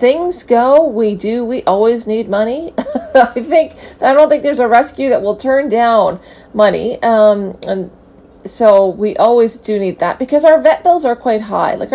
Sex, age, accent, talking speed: female, 40-59, American, 185 wpm